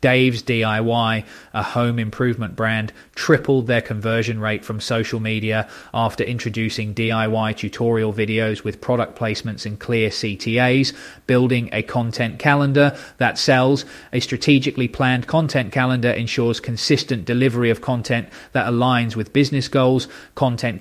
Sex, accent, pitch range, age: male, British, 110-125 Hz, 30-49